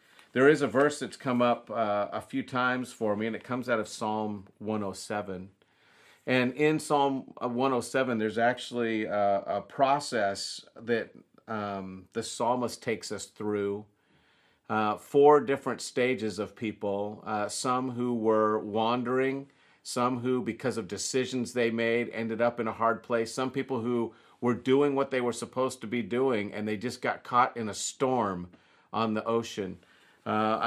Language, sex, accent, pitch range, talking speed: English, male, American, 110-130 Hz, 165 wpm